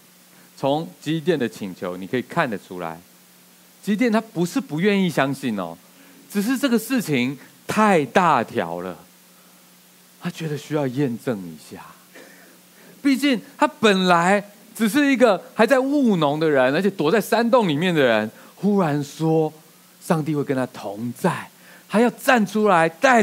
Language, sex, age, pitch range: Chinese, male, 30-49, 130-210 Hz